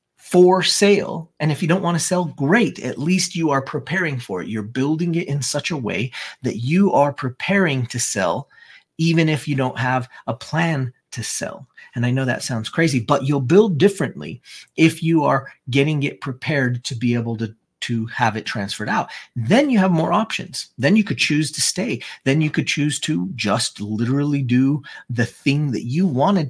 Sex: male